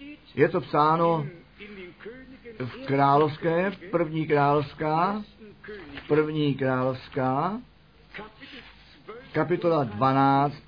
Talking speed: 75 wpm